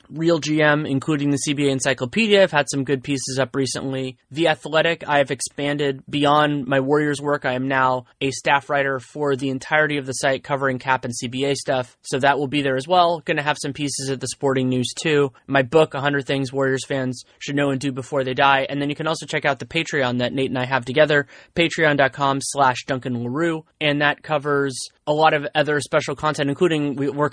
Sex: male